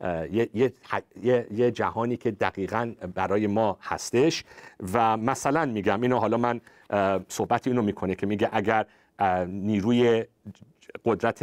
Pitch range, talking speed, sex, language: 105-135 Hz, 115 wpm, male, Persian